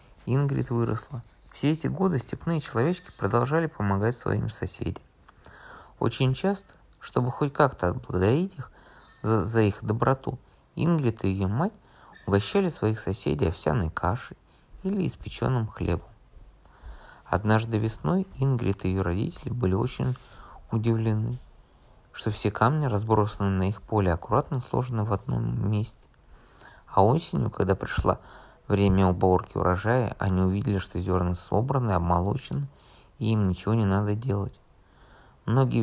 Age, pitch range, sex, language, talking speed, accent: 20-39, 95-130 Hz, male, Russian, 125 wpm, native